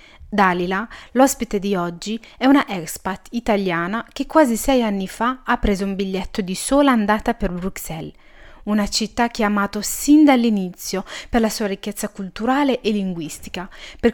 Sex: female